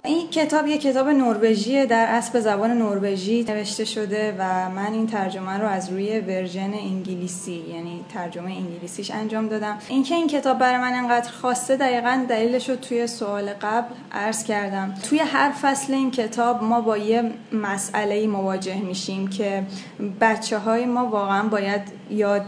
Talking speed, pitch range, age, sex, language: 155 wpm, 195-240 Hz, 10-29, female, English